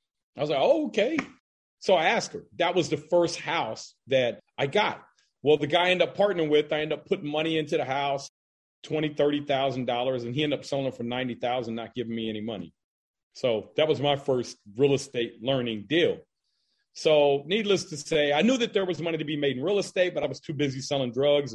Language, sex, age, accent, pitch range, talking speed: English, male, 40-59, American, 135-170 Hz, 225 wpm